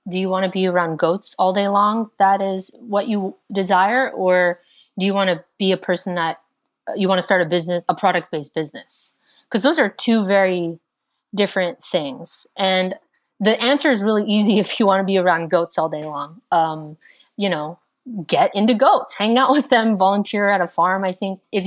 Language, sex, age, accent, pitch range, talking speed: English, female, 30-49, American, 175-210 Hz, 205 wpm